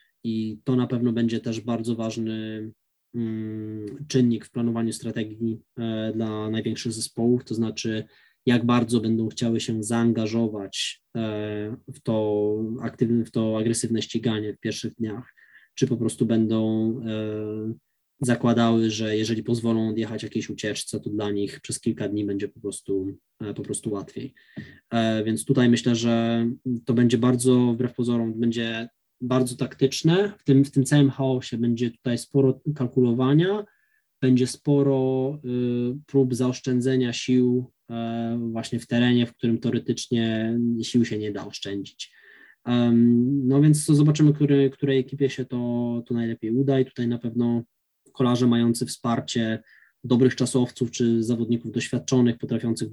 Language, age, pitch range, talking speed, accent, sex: Polish, 20-39, 110-125 Hz, 135 wpm, native, male